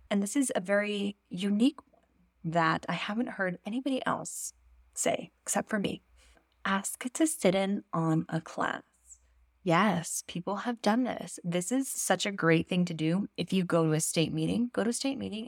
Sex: female